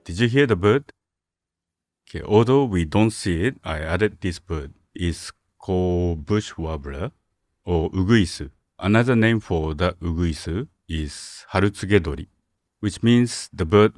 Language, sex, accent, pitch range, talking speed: English, male, Japanese, 80-100 Hz, 135 wpm